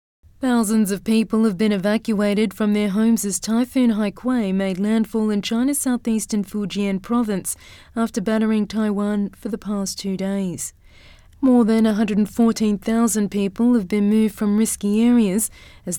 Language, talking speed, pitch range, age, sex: English, 145 wpm, 200-235 Hz, 30-49, female